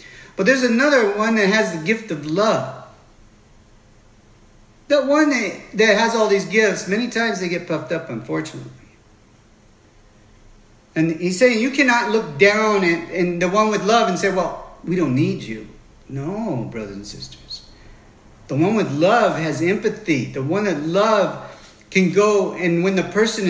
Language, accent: English, American